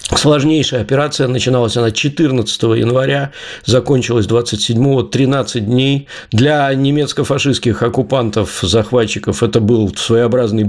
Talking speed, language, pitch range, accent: 95 wpm, Russian, 105-125 Hz, native